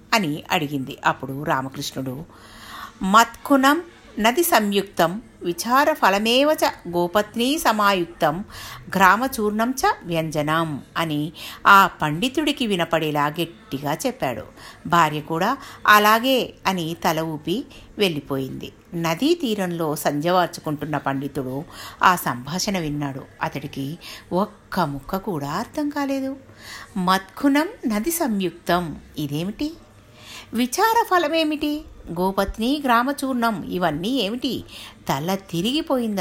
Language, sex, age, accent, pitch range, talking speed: Telugu, female, 50-69, native, 155-235 Hz, 85 wpm